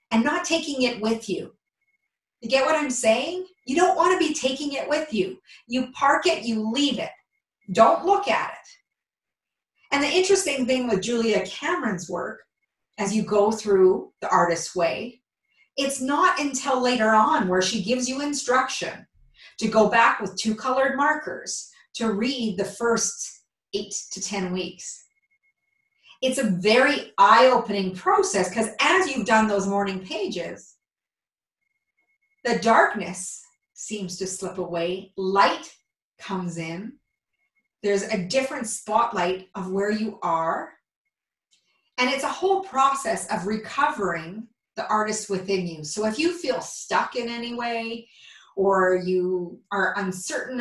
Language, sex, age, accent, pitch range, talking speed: English, female, 40-59, American, 195-275 Hz, 145 wpm